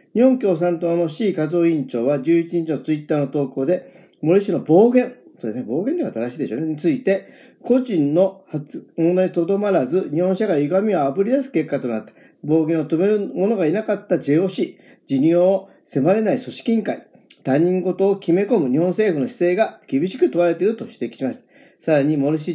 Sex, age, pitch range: male, 40-59, 150-215 Hz